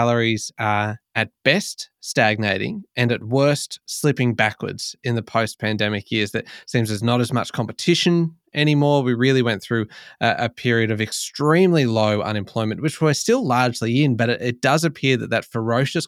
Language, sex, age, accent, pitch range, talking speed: English, male, 20-39, Australian, 110-140 Hz, 180 wpm